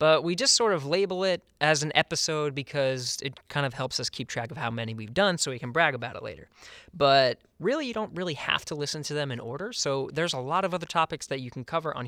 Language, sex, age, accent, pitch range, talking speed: English, male, 20-39, American, 125-160 Hz, 270 wpm